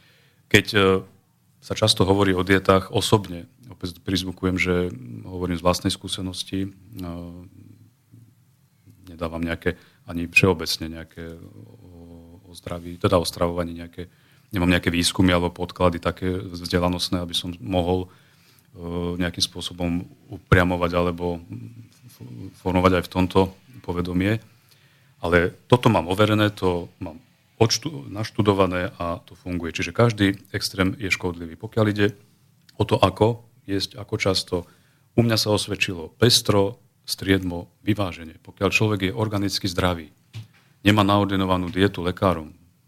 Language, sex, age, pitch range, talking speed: Slovak, male, 40-59, 90-110 Hz, 115 wpm